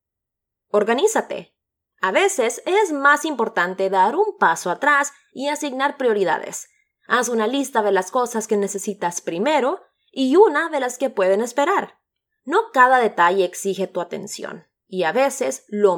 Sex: female